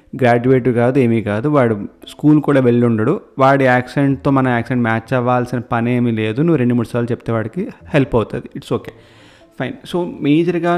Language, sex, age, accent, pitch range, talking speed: Telugu, male, 30-49, native, 120-150 Hz, 165 wpm